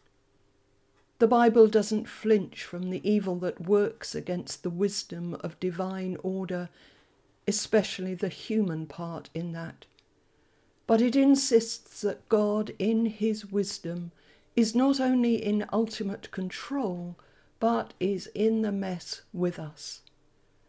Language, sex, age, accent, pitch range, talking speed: English, female, 50-69, British, 170-215 Hz, 120 wpm